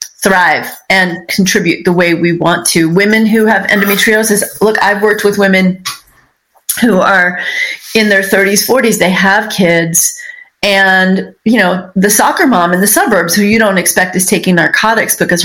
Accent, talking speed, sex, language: American, 165 wpm, female, English